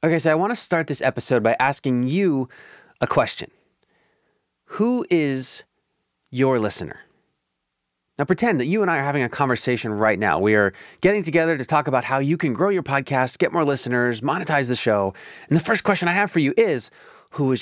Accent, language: American, English